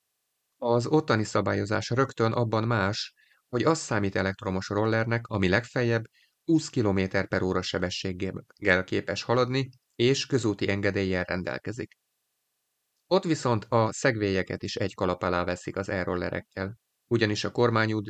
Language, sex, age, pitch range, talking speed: Hungarian, male, 30-49, 95-120 Hz, 125 wpm